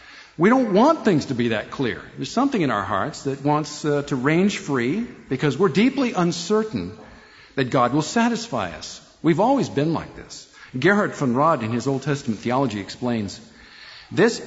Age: 50-69